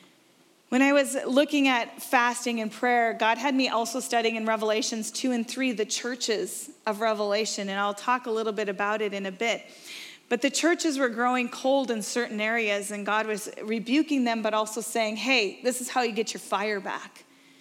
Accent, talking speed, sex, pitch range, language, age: American, 200 wpm, female, 205-255 Hz, English, 30-49